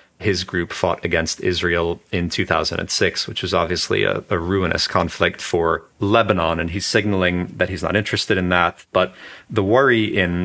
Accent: American